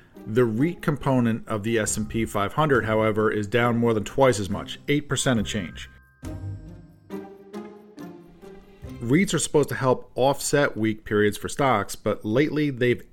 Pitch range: 105-130 Hz